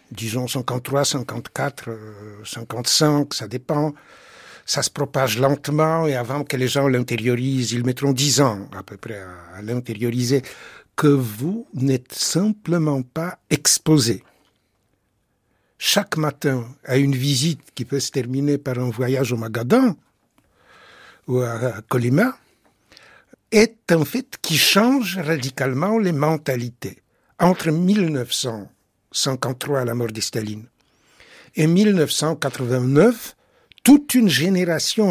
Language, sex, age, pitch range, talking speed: French, male, 60-79, 130-185 Hz, 115 wpm